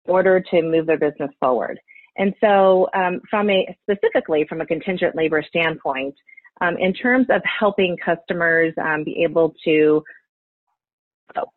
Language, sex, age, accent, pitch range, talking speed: English, female, 30-49, American, 155-190 Hz, 145 wpm